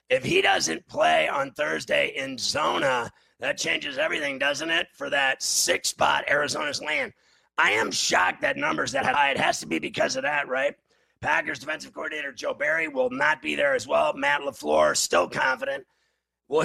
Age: 30-49